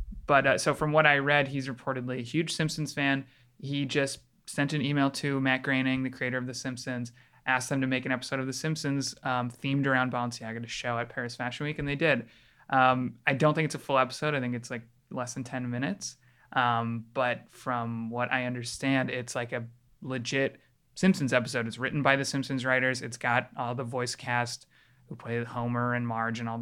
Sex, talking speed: male, 215 wpm